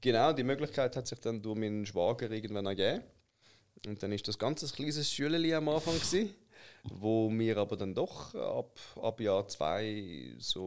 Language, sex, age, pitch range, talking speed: German, male, 20-39, 100-125 Hz, 175 wpm